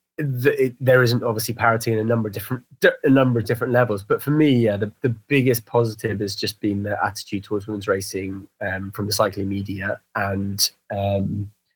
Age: 20-39